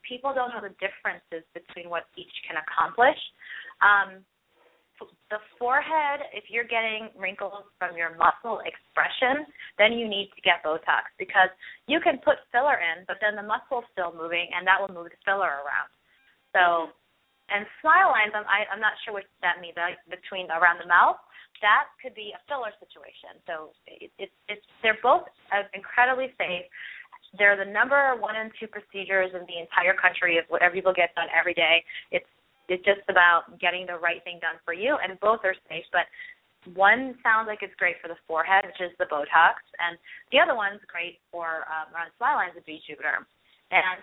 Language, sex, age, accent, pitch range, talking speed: English, female, 20-39, American, 170-220 Hz, 180 wpm